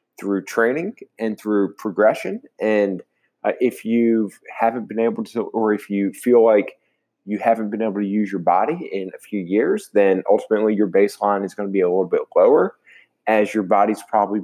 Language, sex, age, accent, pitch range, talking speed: English, male, 20-39, American, 100-120 Hz, 190 wpm